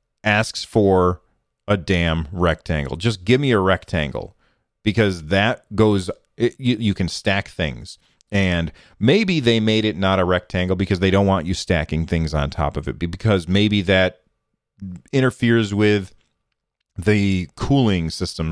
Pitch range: 90-115 Hz